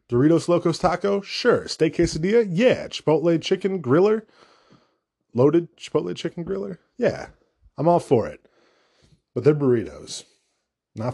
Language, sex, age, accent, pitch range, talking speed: English, male, 20-39, American, 105-140 Hz, 125 wpm